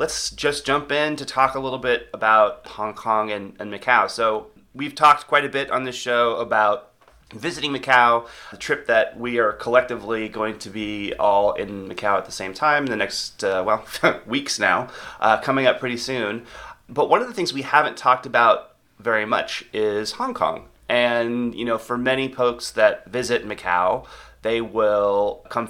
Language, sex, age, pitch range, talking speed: English, male, 30-49, 110-135 Hz, 190 wpm